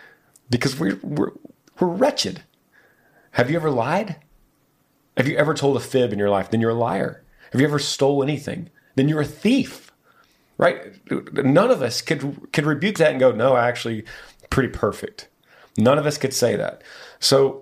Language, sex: English, male